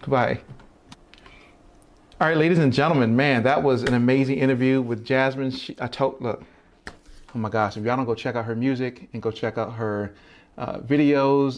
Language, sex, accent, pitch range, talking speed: English, male, American, 115-135 Hz, 185 wpm